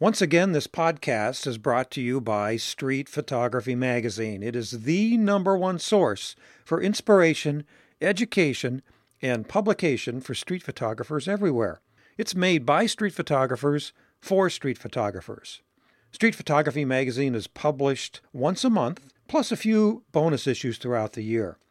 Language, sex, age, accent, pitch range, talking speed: English, male, 50-69, American, 125-180 Hz, 140 wpm